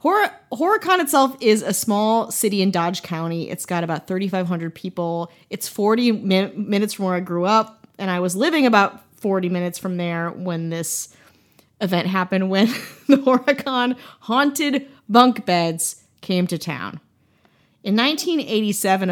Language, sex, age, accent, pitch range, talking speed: English, female, 30-49, American, 180-235 Hz, 145 wpm